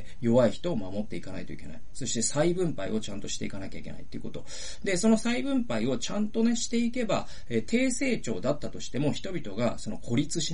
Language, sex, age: Japanese, male, 40-59